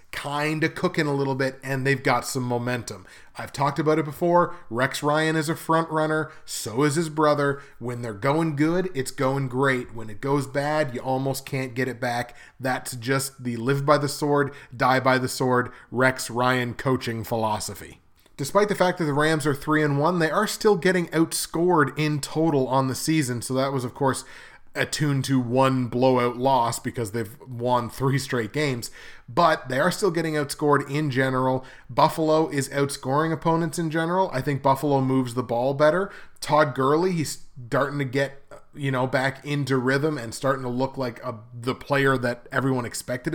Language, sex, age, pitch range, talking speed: English, male, 30-49, 125-155 Hz, 190 wpm